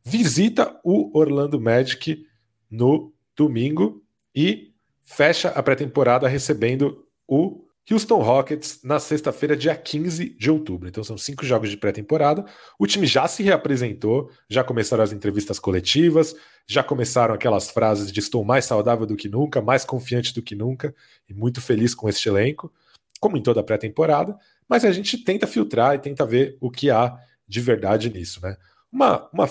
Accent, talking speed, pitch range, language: Brazilian, 165 wpm, 105-145 Hz, Portuguese